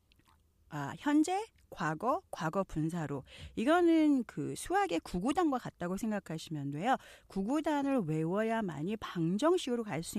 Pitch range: 160-255 Hz